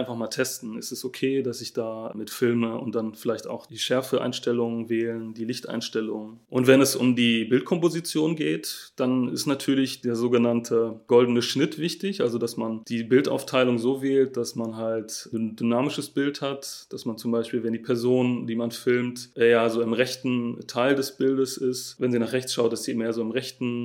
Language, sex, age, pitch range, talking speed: German, male, 30-49, 115-125 Hz, 195 wpm